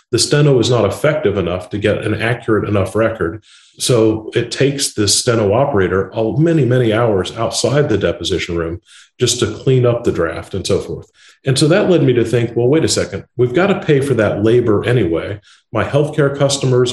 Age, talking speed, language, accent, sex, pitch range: 40-59, 200 wpm, English, American, male, 100-130 Hz